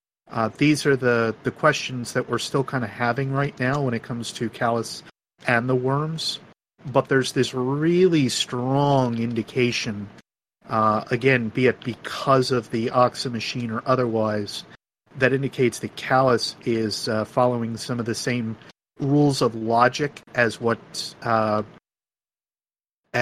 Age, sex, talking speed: 40-59, male, 145 wpm